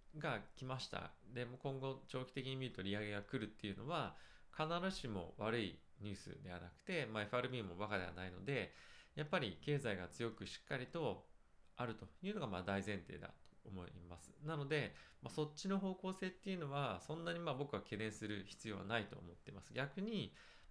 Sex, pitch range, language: male, 95-145 Hz, Japanese